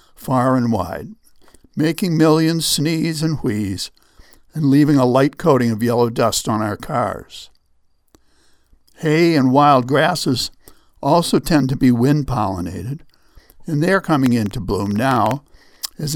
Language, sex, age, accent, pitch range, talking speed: English, male, 60-79, American, 110-150 Hz, 135 wpm